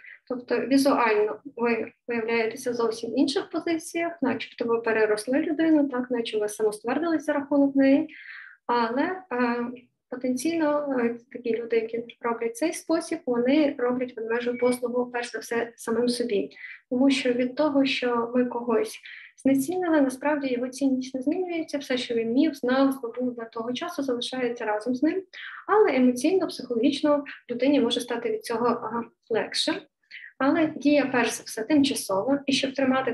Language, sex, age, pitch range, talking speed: Ukrainian, female, 20-39, 235-290 Hz, 150 wpm